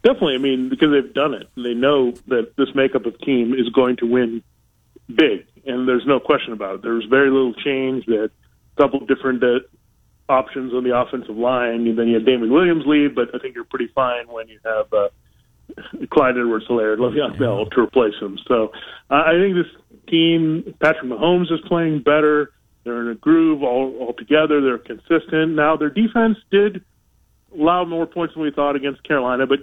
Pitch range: 125-155 Hz